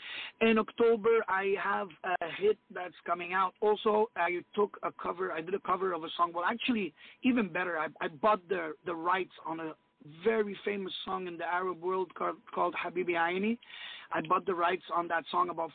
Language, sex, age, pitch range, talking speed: English, male, 30-49, 175-210 Hz, 195 wpm